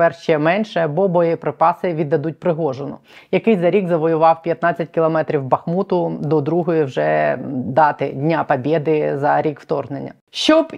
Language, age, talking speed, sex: Ukrainian, 20-39, 130 wpm, female